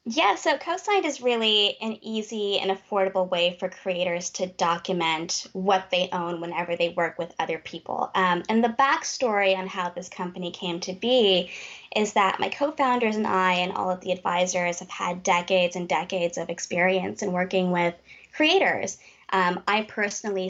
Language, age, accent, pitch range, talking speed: English, 20-39, American, 175-205 Hz, 175 wpm